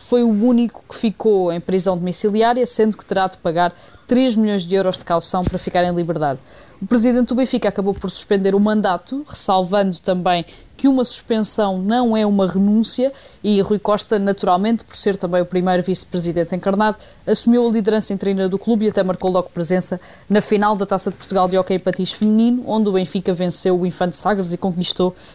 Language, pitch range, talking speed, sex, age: Portuguese, 190-225 Hz, 195 wpm, female, 20-39